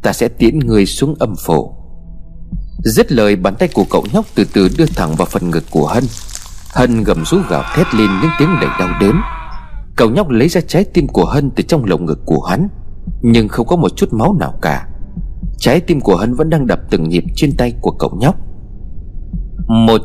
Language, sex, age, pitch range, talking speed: Vietnamese, male, 30-49, 95-160 Hz, 215 wpm